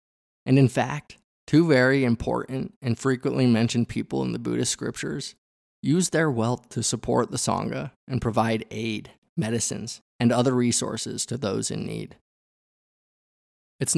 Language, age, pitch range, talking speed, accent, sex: English, 20-39, 105-125 Hz, 140 wpm, American, male